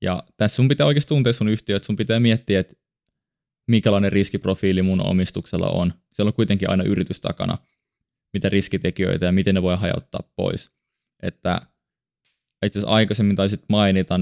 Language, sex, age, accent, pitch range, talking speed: Finnish, male, 20-39, native, 95-105 Hz, 160 wpm